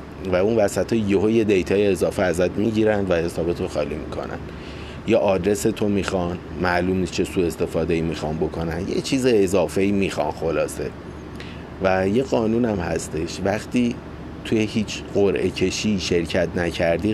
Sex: male